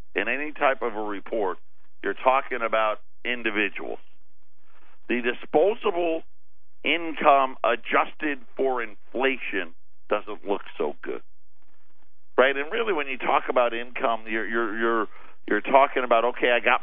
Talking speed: 130 wpm